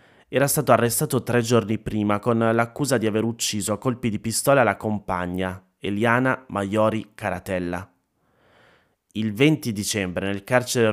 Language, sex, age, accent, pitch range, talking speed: Italian, male, 30-49, native, 100-120 Hz, 135 wpm